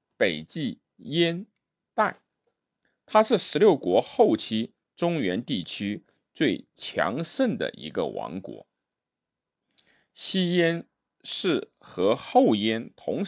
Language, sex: Chinese, male